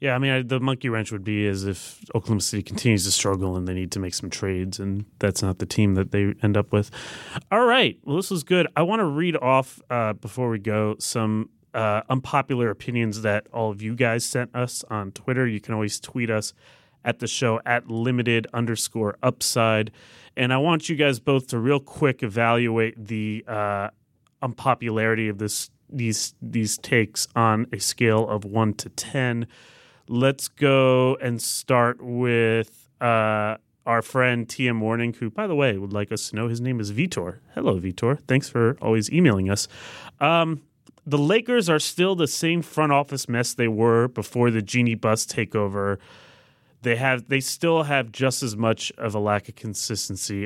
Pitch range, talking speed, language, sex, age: 110-130 Hz, 190 wpm, English, male, 30-49